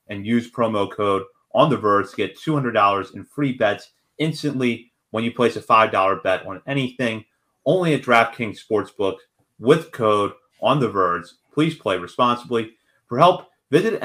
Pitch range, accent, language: 105-135 Hz, American, English